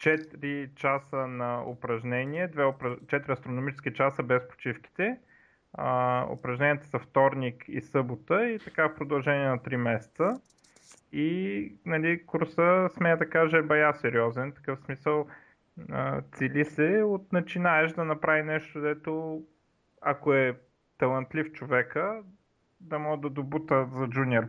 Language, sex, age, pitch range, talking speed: Bulgarian, male, 30-49, 125-155 Hz, 130 wpm